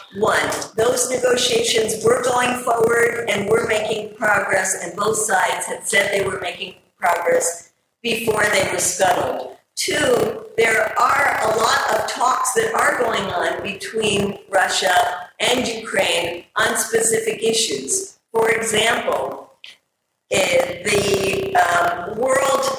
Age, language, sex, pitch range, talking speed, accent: 50-69, English, female, 195-235 Hz, 120 wpm, American